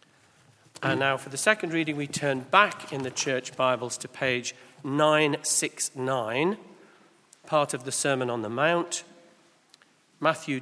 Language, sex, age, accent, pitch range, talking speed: English, male, 40-59, British, 130-185 Hz, 135 wpm